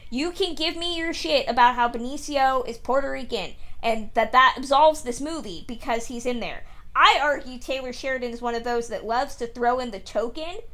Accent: American